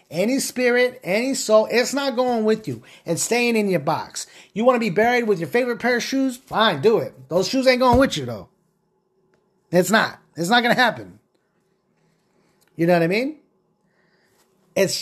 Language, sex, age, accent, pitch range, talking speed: English, male, 30-49, American, 175-220 Hz, 190 wpm